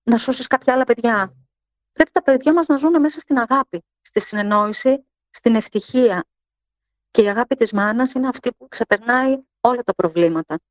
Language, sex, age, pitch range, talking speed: Greek, female, 30-49, 185-265 Hz, 170 wpm